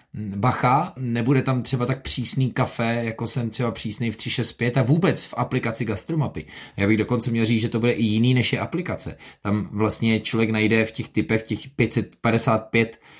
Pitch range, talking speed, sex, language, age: 110-125 Hz, 185 wpm, male, Czech, 20-39